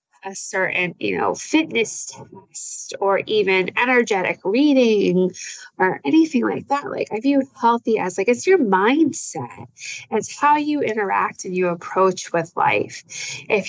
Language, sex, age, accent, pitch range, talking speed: English, female, 20-39, American, 185-230 Hz, 145 wpm